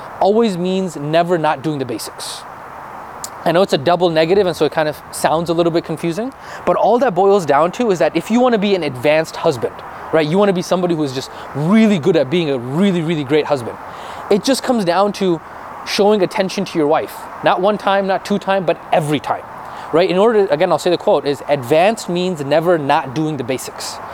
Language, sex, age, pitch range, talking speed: English, male, 20-39, 155-205 Hz, 230 wpm